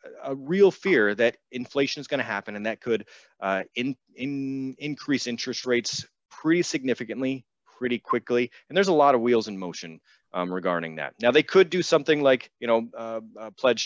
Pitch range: 95-130 Hz